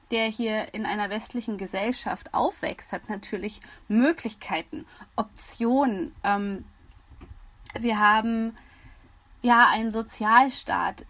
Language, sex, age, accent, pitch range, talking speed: German, female, 20-39, German, 210-255 Hz, 90 wpm